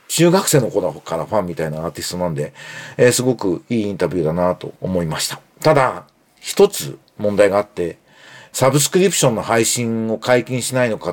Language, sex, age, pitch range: Japanese, male, 40-59, 105-160 Hz